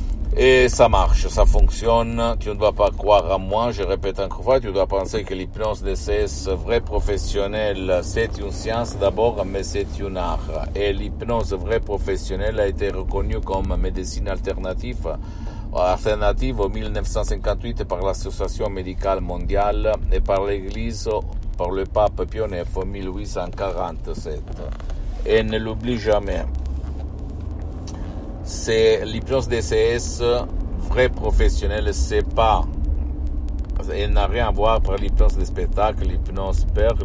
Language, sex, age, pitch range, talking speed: Italian, male, 50-69, 85-105 Hz, 135 wpm